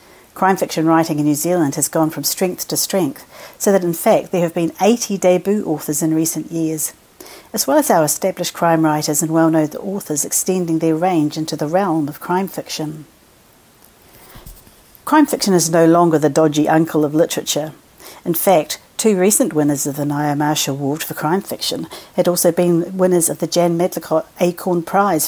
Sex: female